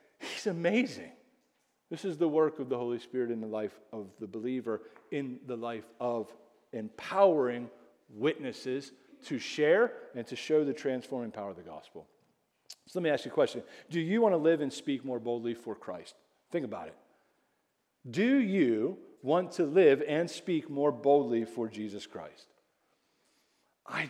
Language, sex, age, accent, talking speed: English, male, 40-59, American, 165 wpm